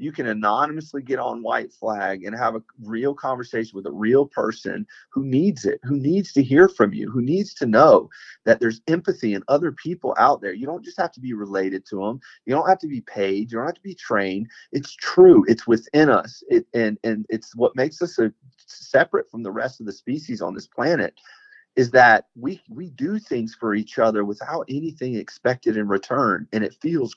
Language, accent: English, American